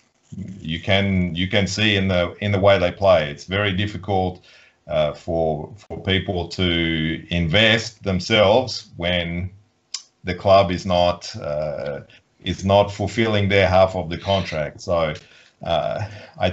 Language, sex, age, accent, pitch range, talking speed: Polish, male, 40-59, Australian, 85-100 Hz, 140 wpm